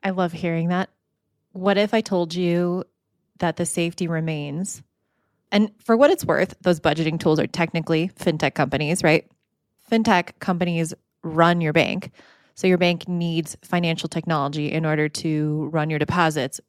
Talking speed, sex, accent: 155 wpm, female, American